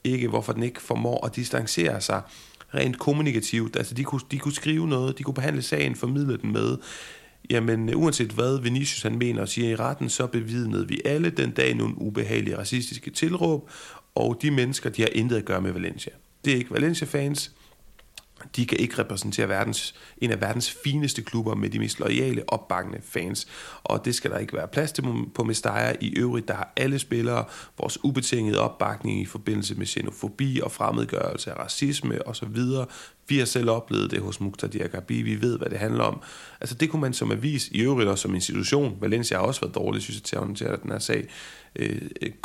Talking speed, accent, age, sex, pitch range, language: 195 wpm, native, 30-49, male, 110-140 Hz, Danish